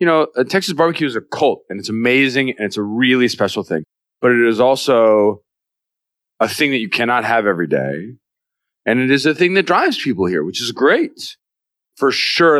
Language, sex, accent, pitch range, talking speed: English, male, American, 105-145 Hz, 205 wpm